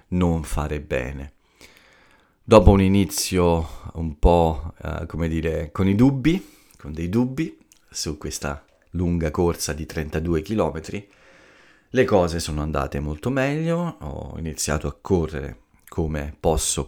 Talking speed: 130 wpm